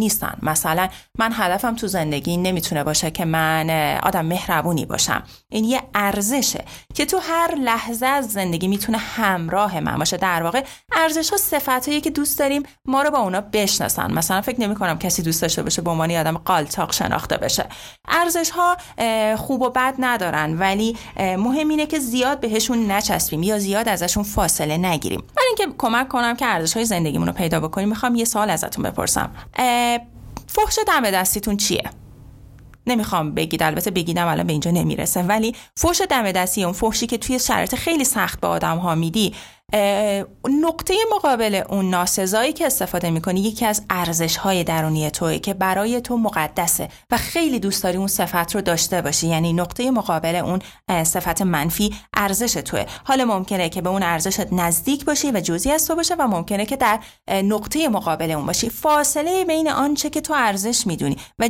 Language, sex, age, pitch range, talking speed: Persian, female, 30-49, 175-255 Hz, 170 wpm